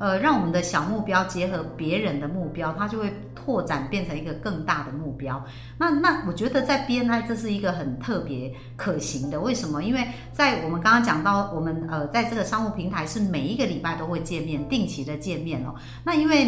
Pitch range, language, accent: 150-230 Hz, Chinese, American